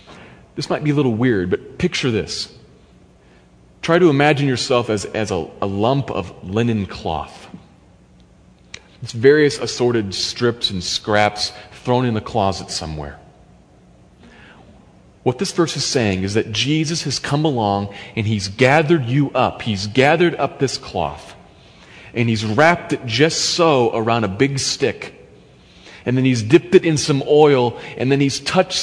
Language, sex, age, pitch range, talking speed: English, male, 30-49, 110-160 Hz, 155 wpm